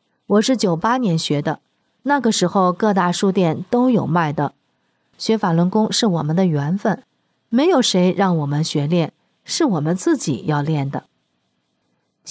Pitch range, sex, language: 170-235 Hz, female, Chinese